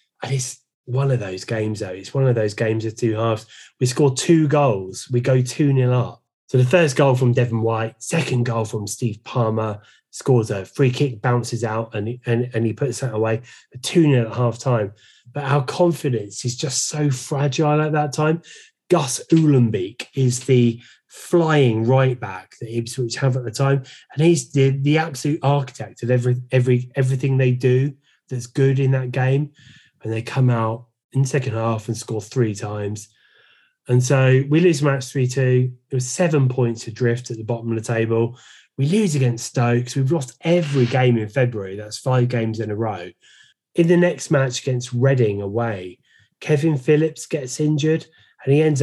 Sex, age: male, 30-49